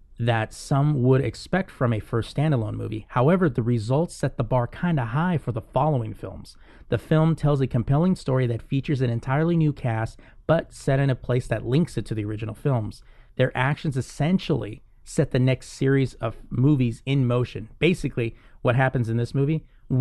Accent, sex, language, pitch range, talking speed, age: American, male, English, 115-145 Hz, 185 wpm, 30-49